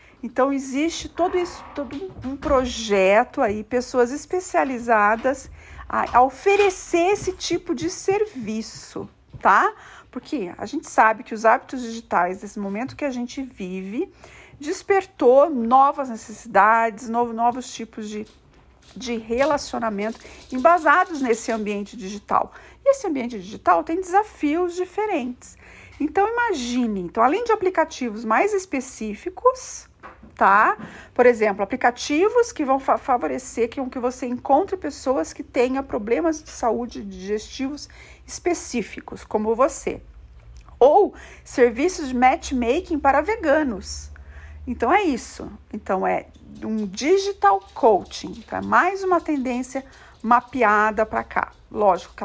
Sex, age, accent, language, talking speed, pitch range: female, 50-69, Brazilian, Portuguese, 115 wpm, 225-320 Hz